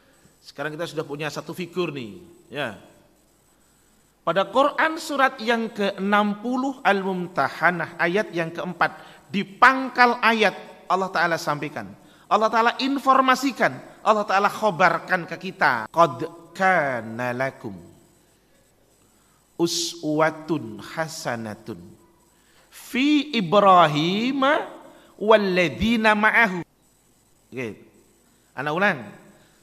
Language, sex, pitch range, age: Indonesian, male, 155-225 Hz, 40-59